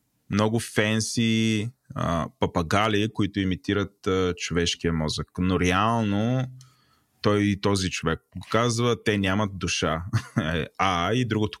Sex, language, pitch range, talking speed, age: male, Bulgarian, 90-110 Hz, 115 wpm, 20-39